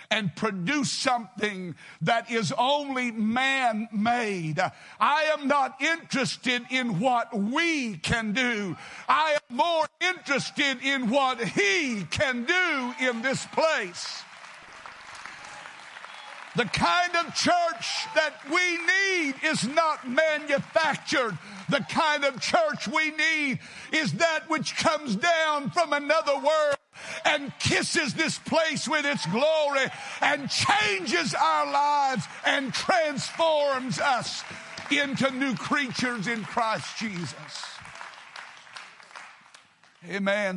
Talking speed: 110 wpm